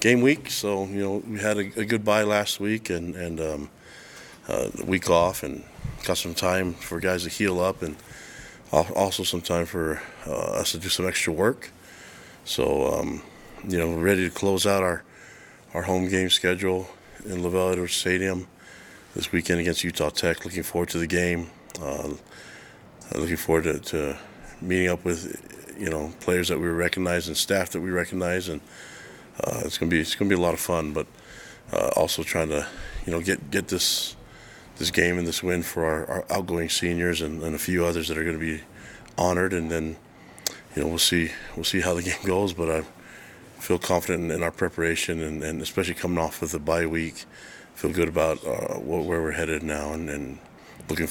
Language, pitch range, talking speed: English, 80-95 Hz, 200 wpm